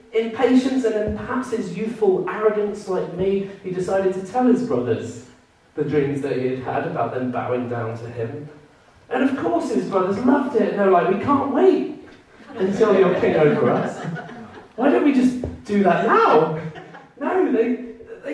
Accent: British